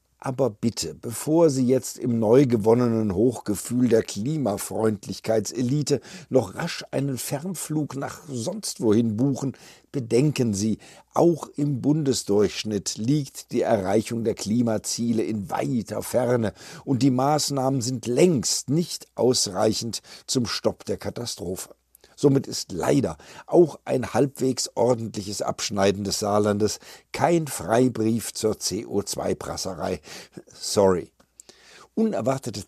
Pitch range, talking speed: 110-145 Hz, 110 wpm